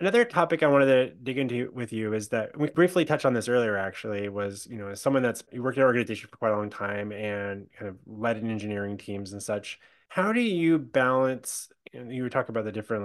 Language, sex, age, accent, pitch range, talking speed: English, male, 20-39, American, 100-125 Hz, 250 wpm